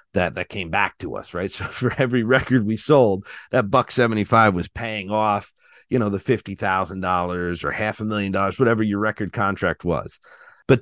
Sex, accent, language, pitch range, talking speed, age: male, American, English, 90-125 Hz, 200 wpm, 40-59